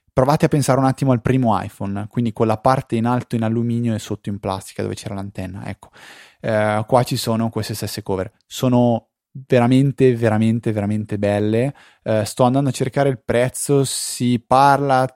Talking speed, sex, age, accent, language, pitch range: 175 wpm, male, 20-39, native, Italian, 100-125 Hz